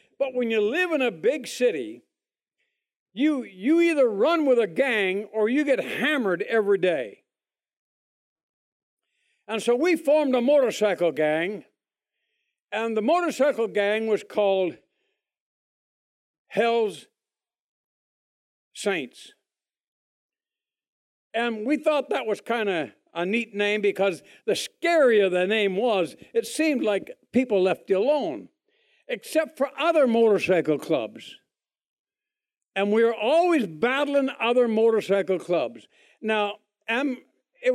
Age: 60-79